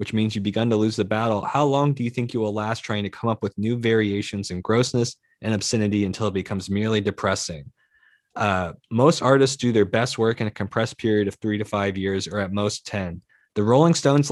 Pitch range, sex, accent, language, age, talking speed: 110-140 Hz, male, American, English, 20-39, 230 wpm